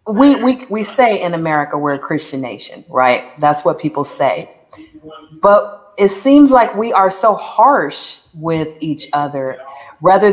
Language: English